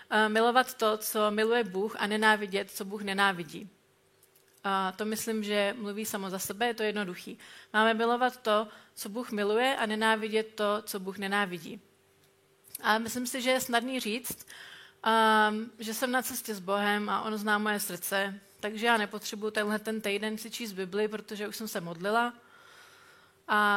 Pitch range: 205-235 Hz